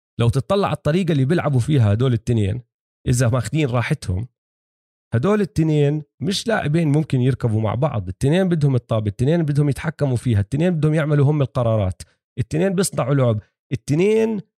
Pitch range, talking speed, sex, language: 115-160 Hz, 150 wpm, male, Arabic